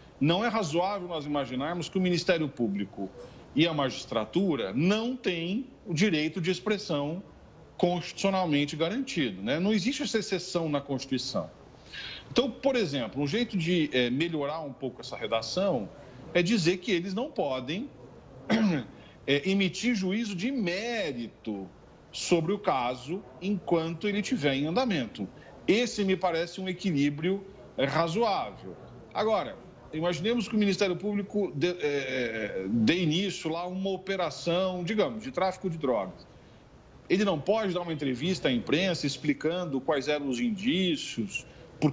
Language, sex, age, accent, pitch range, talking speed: Portuguese, male, 40-59, Brazilian, 145-195 Hz, 135 wpm